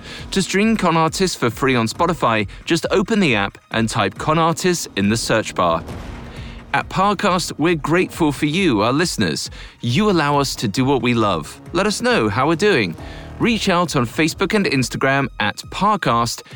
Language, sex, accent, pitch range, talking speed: English, male, British, 115-170 Hz, 180 wpm